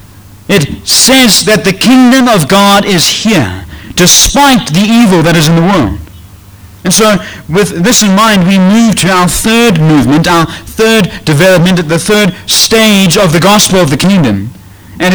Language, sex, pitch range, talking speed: English, male, 140-220 Hz, 170 wpm